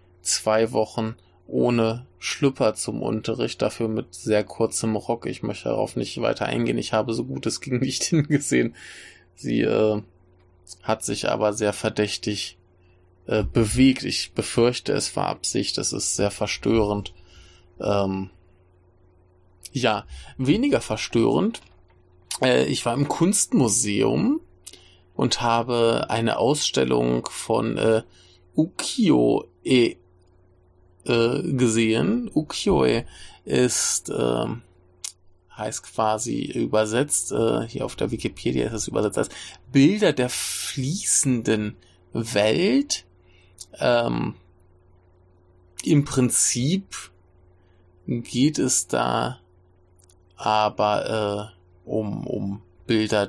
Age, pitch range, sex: 20-39, 90-115 Hz, male